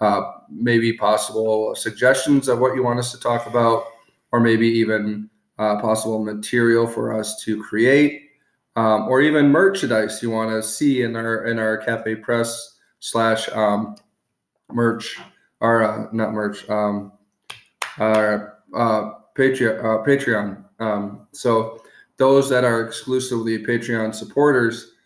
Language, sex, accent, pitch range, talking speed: English, male, American, 110-120 Hz, 135 wpm